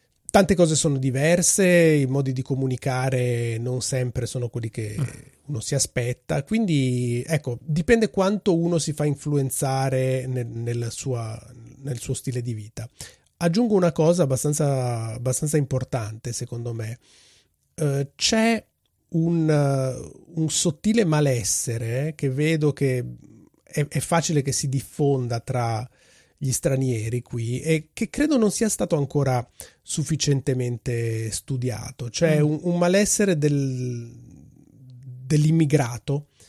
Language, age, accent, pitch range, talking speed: Italian, 30-49, native, 125-155 Hz, 120 wpm